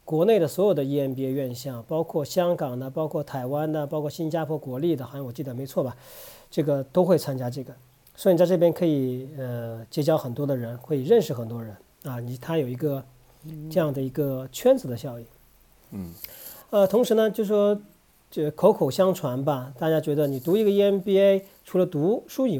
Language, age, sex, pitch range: Chinese, 40-59, male, 130-180 Hz